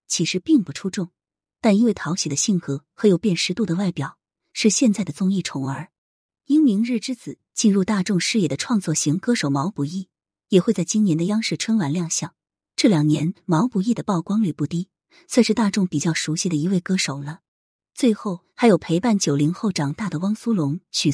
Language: Chinese